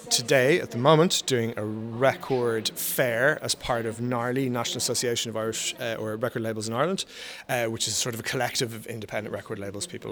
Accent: Irish